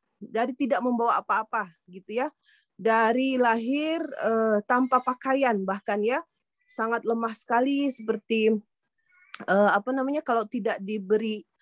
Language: Indonesian